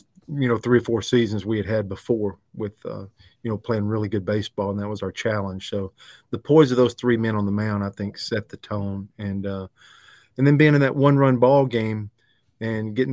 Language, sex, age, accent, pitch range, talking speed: English, male, 40-59, American, 105-120 Hz, 230 wpm